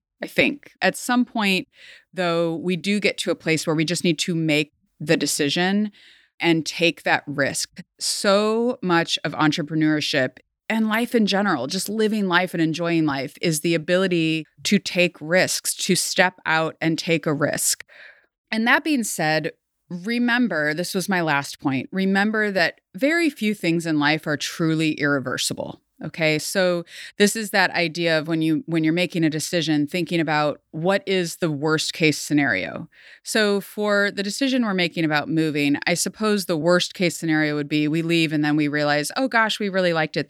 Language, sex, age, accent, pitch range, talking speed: English, female, 30-49, American, 155-210 Hz, 180 wpm